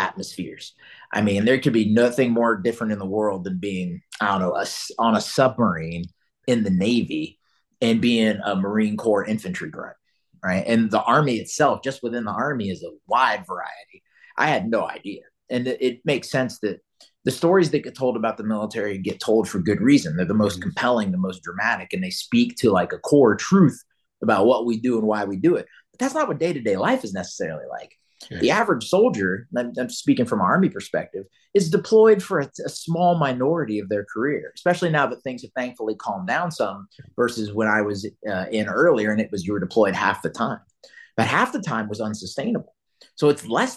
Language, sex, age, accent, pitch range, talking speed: English, male, 30-49, American, 105-150 Hz, 215 wpm